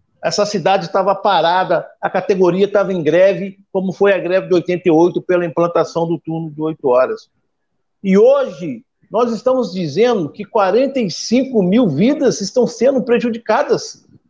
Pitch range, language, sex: 180-235 Hz, Portuguese, male